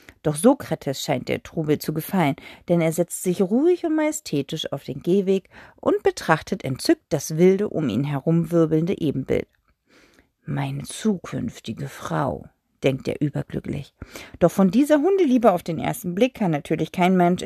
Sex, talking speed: female, 150 wpm